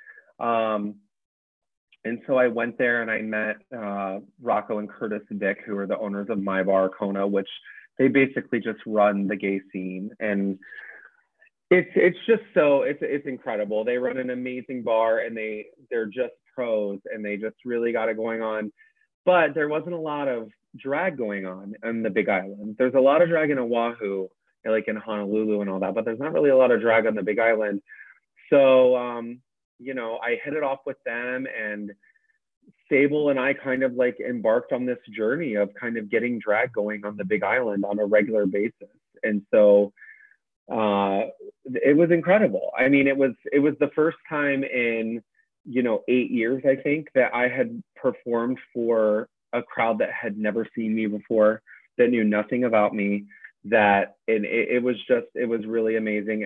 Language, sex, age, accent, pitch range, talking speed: English, male, 30-49, American, 105-130 Hz, 190 wpm